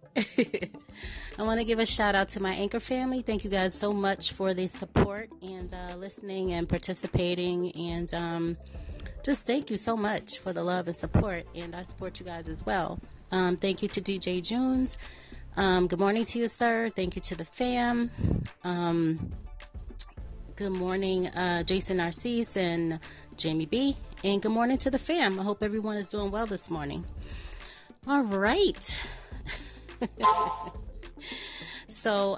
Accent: American